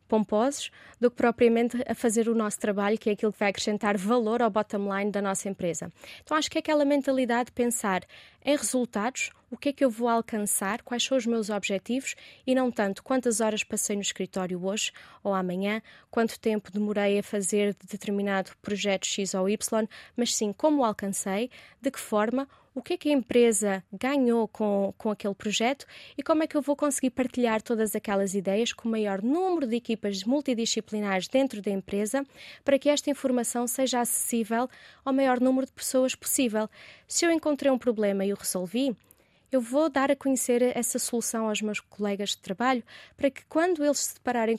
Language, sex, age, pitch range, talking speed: Portuguese, female, 20-39, 210-260 Hz, 195 wpm